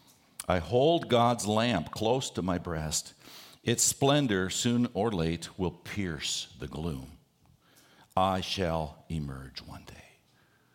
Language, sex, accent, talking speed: English, male, American, 125 wpm